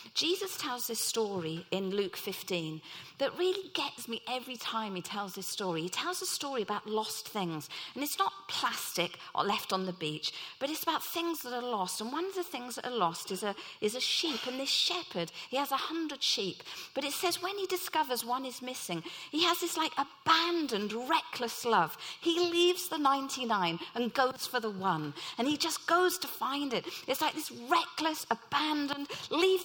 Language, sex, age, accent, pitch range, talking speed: English, female, 40-59, British, 220-330 Hz, 195 wpm